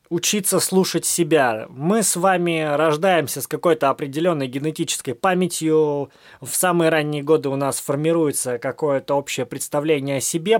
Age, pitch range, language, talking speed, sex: 20-39, 145-180 Hz, Russian, 135 wpm, male